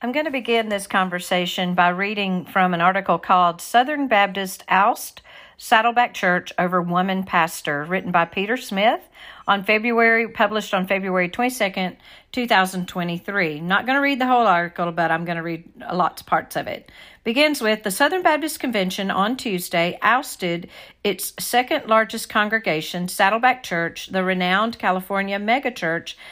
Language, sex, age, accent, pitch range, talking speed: English, female, 50-69, American, 180-240 Hz, 155 wpm